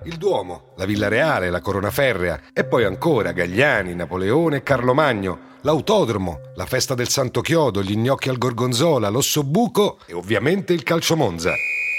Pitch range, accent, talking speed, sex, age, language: 110-170 Hz, native, 155 wpm, male, 40-59, Italian